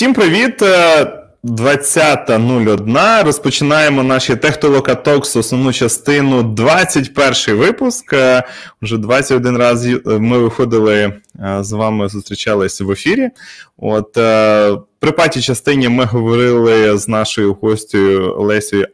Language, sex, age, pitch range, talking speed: Ukrainian, male, 20-39, 105-130 Hz, 90 wpm